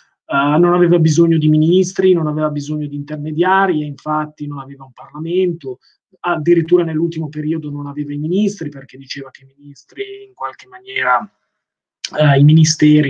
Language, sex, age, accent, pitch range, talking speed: Italian, male, 30-49, native, 145-175 Hz, 160 wpm